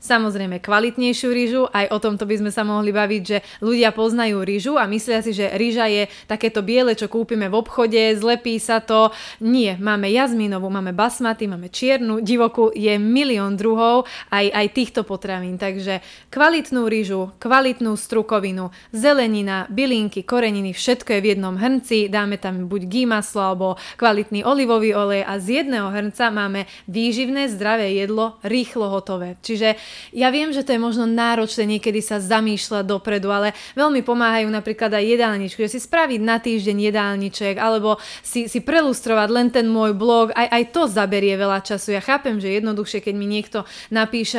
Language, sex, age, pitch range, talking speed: Slovak, female, 20-39, 205-235 Hz, 165 wpm